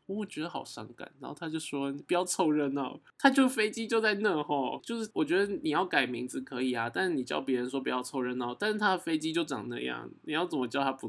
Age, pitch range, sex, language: 20-39, 125-190 Hz, male, Chinese